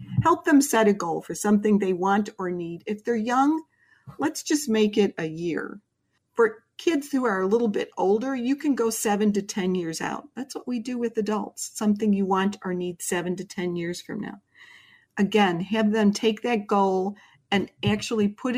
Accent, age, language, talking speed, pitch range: American, 50-69, English, 200 wpm, 190-230 Hz